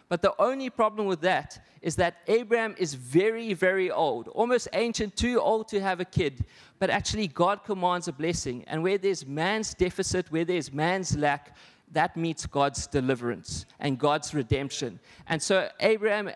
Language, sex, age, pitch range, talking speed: English, male, 20-39, 165-200 Hz, 170 wpm